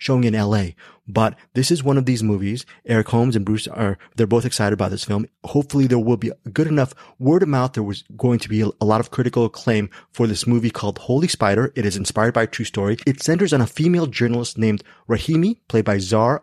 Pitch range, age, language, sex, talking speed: 110-140 Hz, 30-49, English, male, 235 wpm